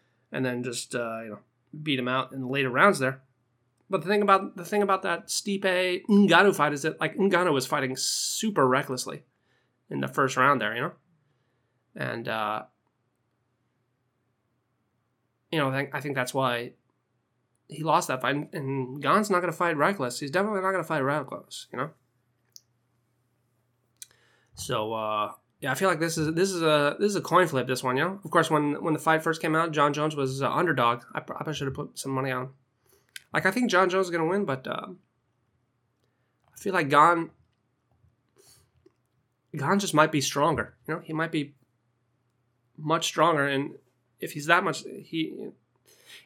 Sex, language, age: male, English, 20-39